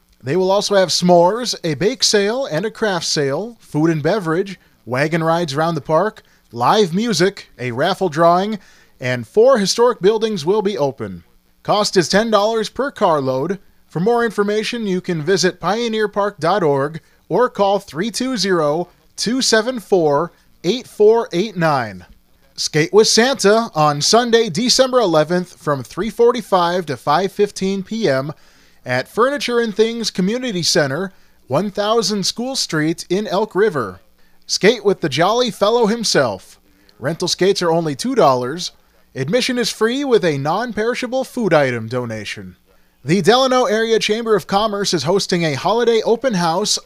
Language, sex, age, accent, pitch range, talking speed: English, male, 30-49, American, 160-220 Hz, 130 wpm